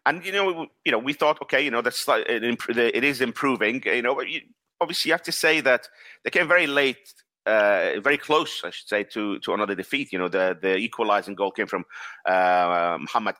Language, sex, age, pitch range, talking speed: English, male, 30-49, 100-145 Hz, 235 wpm